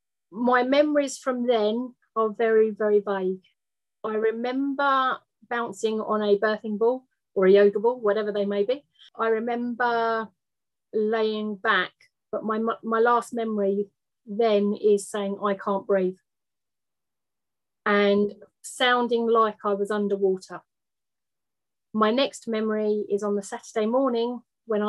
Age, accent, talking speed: 30-49, British, 130 wpm